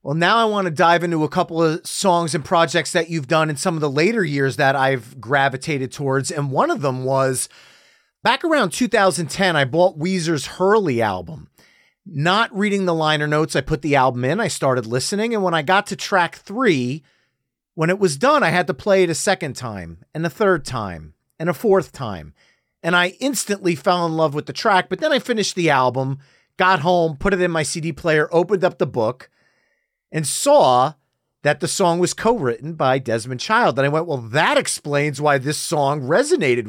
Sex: male